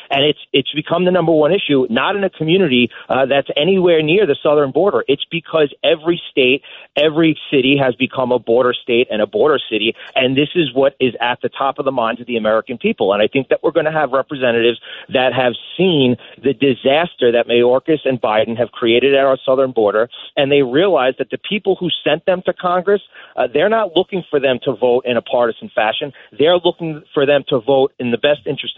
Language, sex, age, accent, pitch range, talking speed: English, male, 40-59, American, 130-155 Hz, 220 wpm